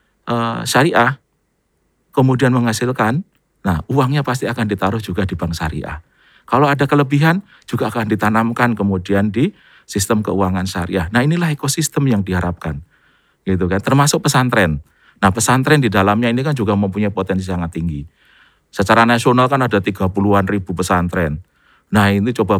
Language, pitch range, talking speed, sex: Indonesian, 95-125 Hz, 140 wpm, male